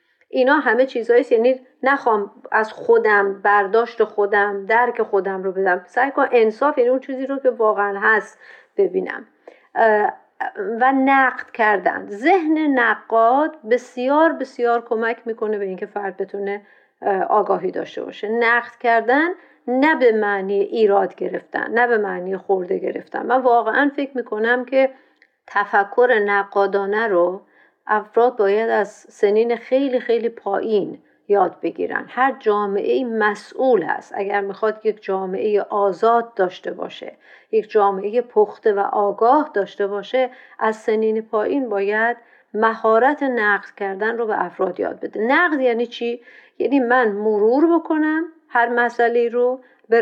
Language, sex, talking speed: Persian, female, 135 wpm